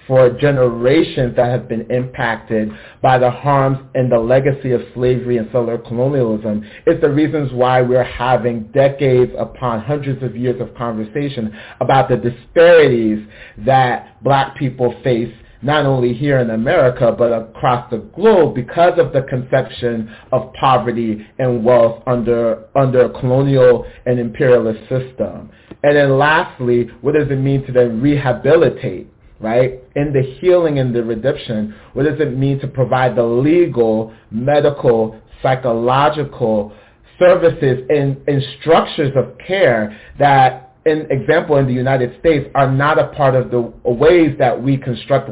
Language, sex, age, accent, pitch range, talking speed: English, male, 40-59, American, 120-145 Hz, 145 wpm